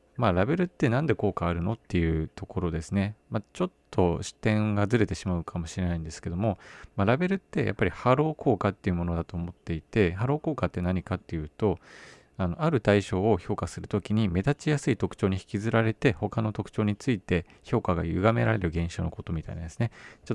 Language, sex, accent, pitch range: Japanese, male, native, 90-120 Hz